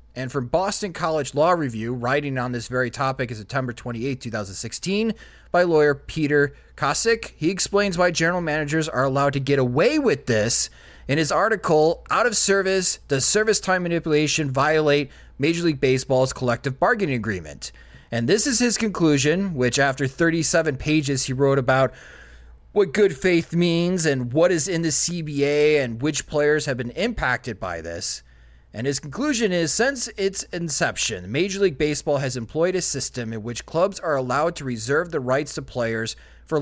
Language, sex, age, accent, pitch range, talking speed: English, male, 30-49, American, 130-175 Hz, 170 wpm